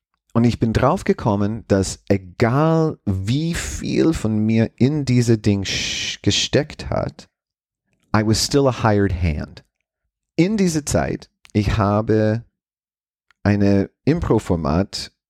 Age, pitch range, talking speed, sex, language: 30-49, 90-115 Hz, 115 wpm, male, German